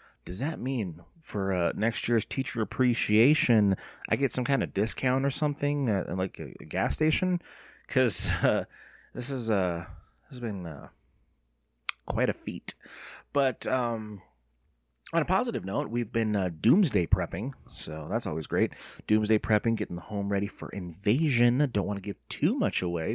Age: 30-49